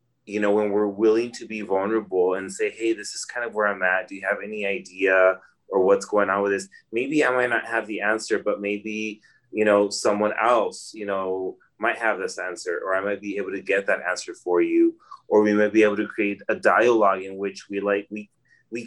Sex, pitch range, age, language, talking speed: male, 95-115 Hz, 30-49, English, 235 wpm